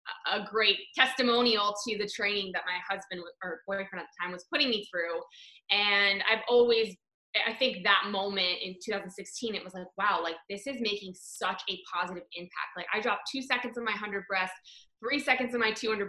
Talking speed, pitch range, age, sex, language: 200 wpm, 185-220 Hz, 20-39, female, English